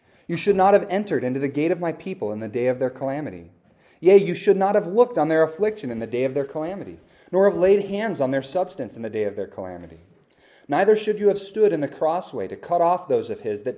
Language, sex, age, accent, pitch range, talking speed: English, male, 30-49, American, 120-180 Hz, 260 wpm